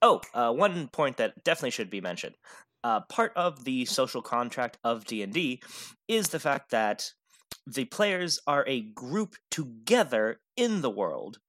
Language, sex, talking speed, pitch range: English, male, 155 wpm, 115-195 Hz